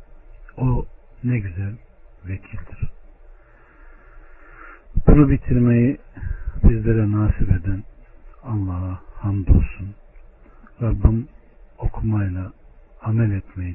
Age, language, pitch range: 60-79, Turkish, 95-110 Hz